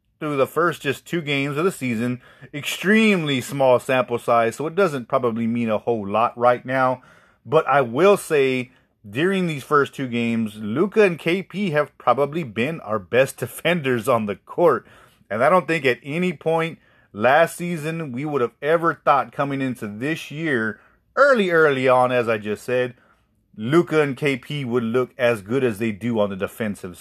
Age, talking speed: 30-49, 180 wpm